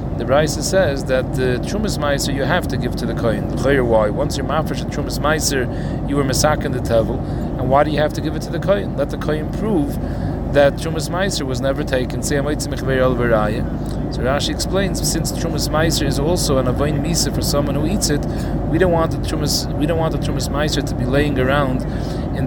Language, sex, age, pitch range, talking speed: English, male, 30-49, 130-150 Hz, 200 wpm